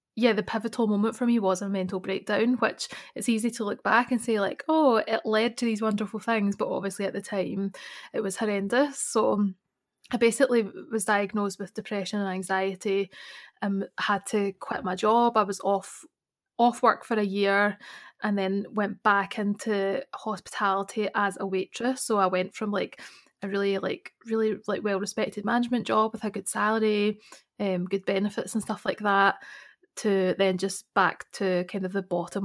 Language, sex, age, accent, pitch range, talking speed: English, female, 20-39, British, 190-225 Hz, 185 wpm